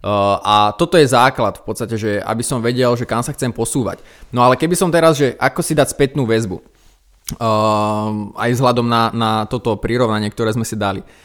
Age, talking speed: 20-39, 205 wpm